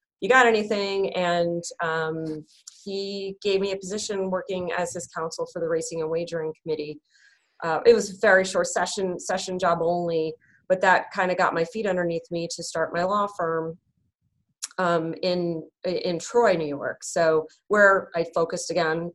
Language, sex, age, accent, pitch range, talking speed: English, female, 30-49, American, 160-190 Hz, 170 wpm